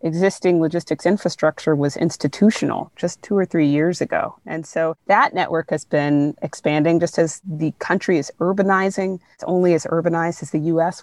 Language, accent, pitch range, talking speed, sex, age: English, American, 165-195 Hz, 170 wpm, female, 30-49